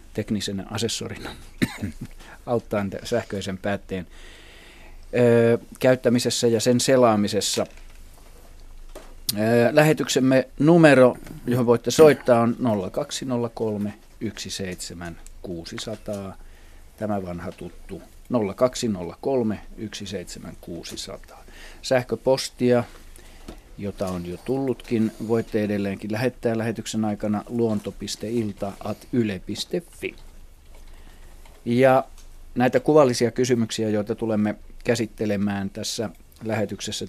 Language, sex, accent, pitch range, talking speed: Finnish, male, native, 95-115 Hz, 70 wpm